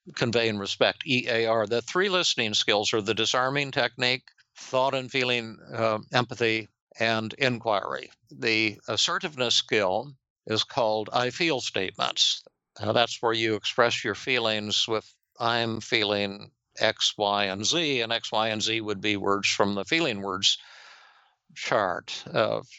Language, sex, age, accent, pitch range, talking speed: English, male, 60-79, American, 105-125 Hz, 145 wpm